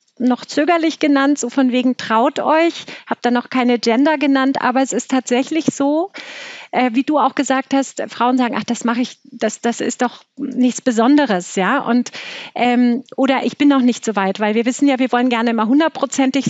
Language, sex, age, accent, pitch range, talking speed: German, female, 40-59, German, 230-280 Hz, 205 wpm